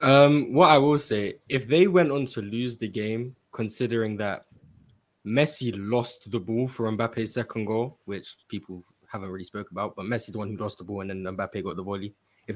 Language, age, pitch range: English, 20-39, 100-120 Hz